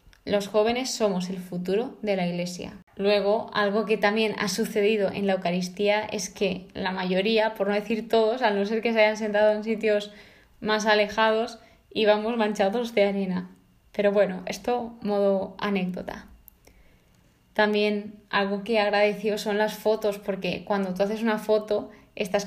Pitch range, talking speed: 195-215 Hz, 160 wpm